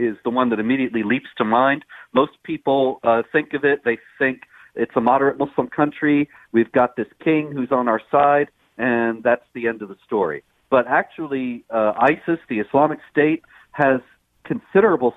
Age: 50-69